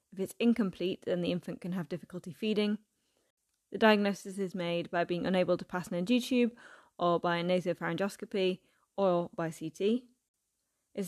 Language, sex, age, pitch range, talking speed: English, female, 20-39, 180-210 Hz, 155 wpm